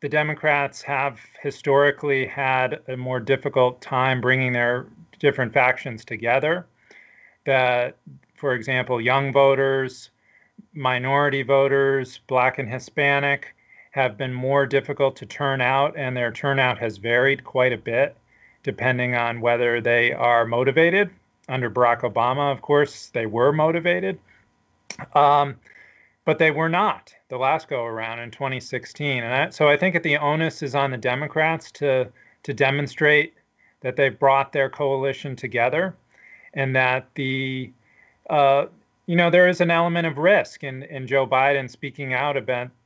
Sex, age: male, 40-59